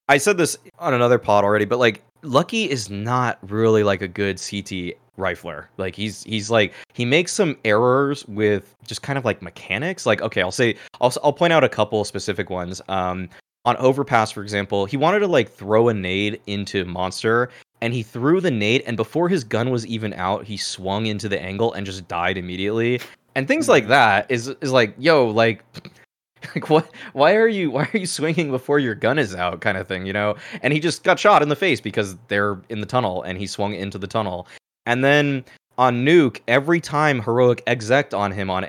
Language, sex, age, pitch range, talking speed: English, male, 20-39, 100-140 Hz, 215 wpm